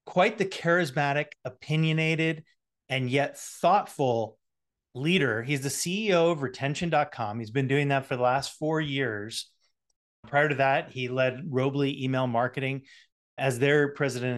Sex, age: male, 30-49